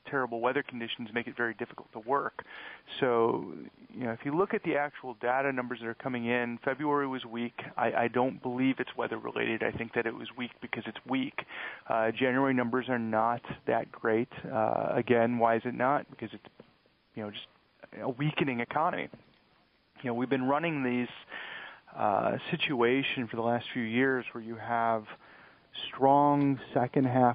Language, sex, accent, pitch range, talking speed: English, male, American, 115-130 Hz, 180 wpm